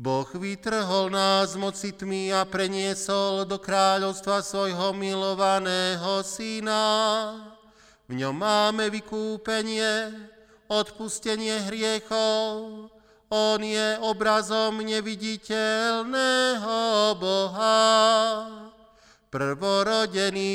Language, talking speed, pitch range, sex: Slovak, 65 wpm, 195-220 Hz, male